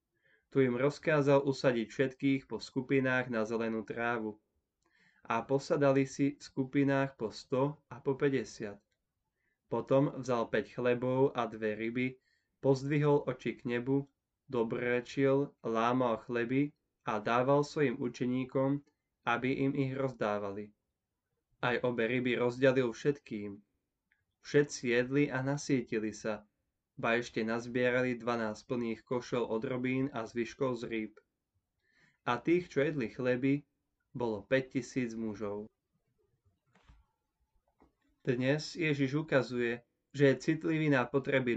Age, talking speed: 20-39, 115 wpm